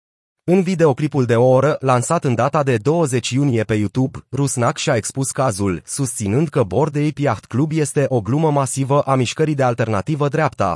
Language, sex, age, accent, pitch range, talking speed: Romanian, male, 30-49, native, 115-145 Hz, 175 wpm